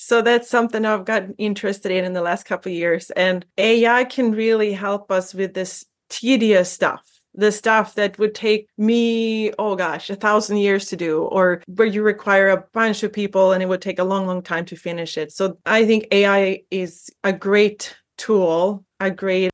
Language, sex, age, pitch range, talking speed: English, female, 30-49, 180-220 Hz, 200 wpm